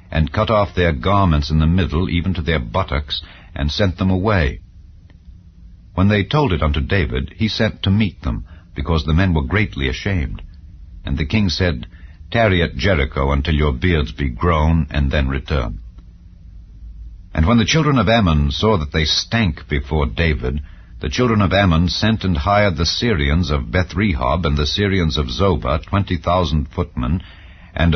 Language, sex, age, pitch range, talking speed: English, male, 60-79, 75-95 Hz, 170 wpm